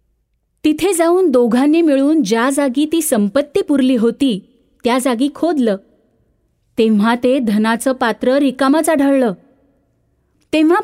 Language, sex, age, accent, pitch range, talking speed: Marathi, female, 30-49, native, 230-290 Hz, 110 wpm